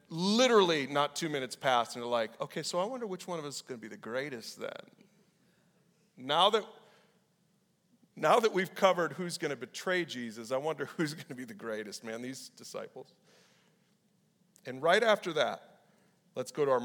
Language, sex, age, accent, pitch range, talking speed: English, male, 40-59, American, 140-195 Hz, 180 wpm